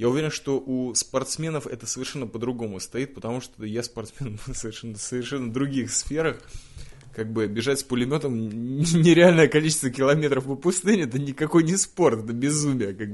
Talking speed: 150 wpm